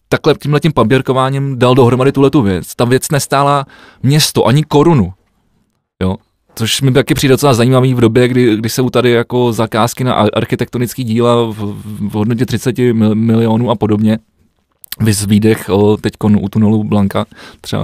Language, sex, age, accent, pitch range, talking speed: Czech, male, 20-39, native, 110-125 Hz, 150 wpm